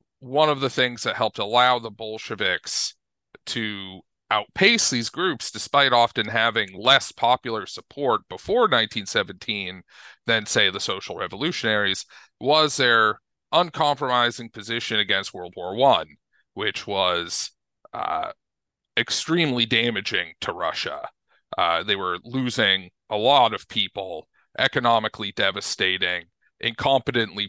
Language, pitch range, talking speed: English, 110-135 Hz, 115 wpm